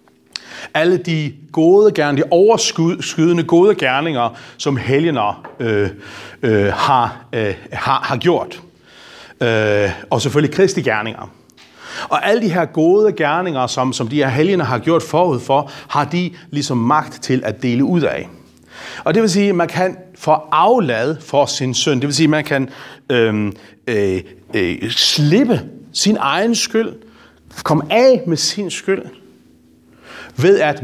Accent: native